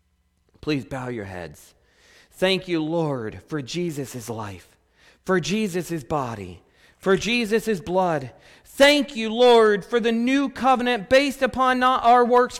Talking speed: 135 wpm